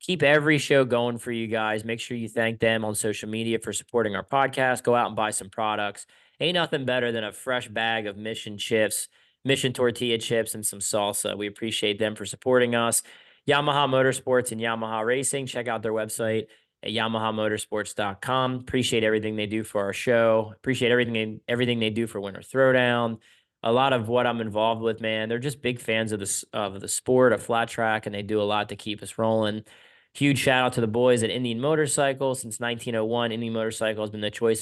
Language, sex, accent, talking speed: English, male, American, 205 wpm